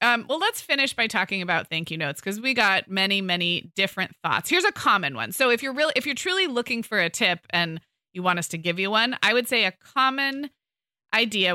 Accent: American